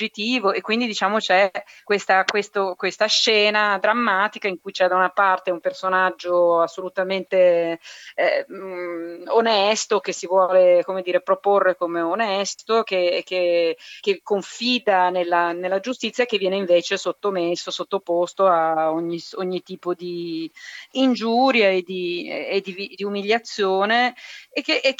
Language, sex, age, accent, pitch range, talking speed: Italian, female, 30-49, native, 170-205 Hz, 130 wpm